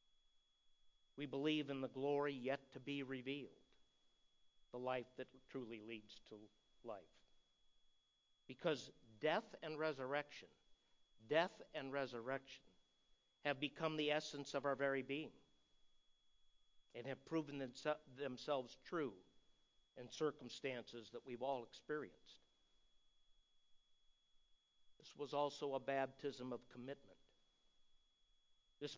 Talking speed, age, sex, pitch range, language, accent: 105 wpm, 60-79, male, 125-150 Hz, English, American